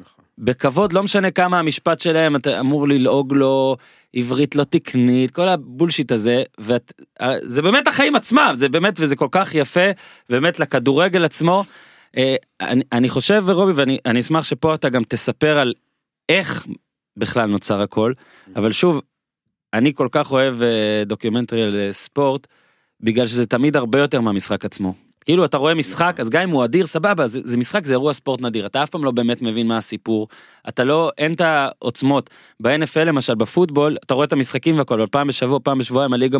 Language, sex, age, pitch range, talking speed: Hebrew, male, 30-49, 120-160 Hz, 170 wpm